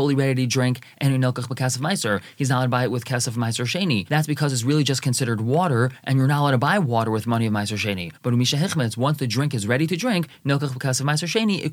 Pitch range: 125-155 Hz